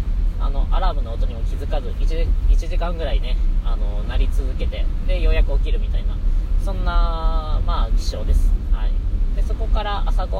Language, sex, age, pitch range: Japanese, female, 20-39, 75-85 Hz